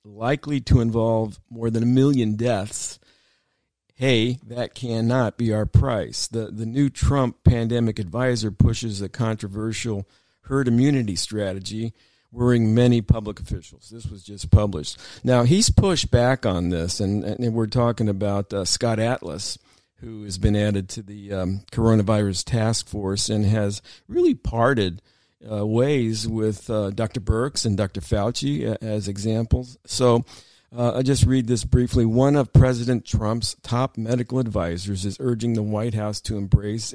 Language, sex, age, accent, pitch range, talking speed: English, male, 50-69, American, 105-120 Hz, 155 wpm